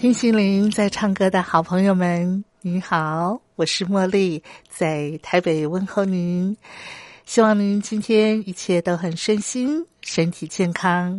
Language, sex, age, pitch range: Chinese, female, 50-69, 160-205 Hz